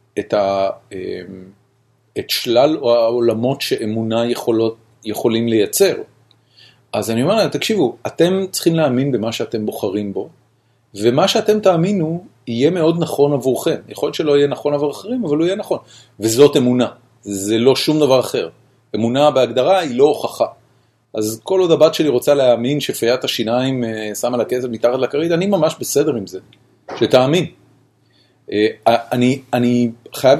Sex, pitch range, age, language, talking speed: male, 110-145 Hz, 40-59, Hebrew, 145 wpm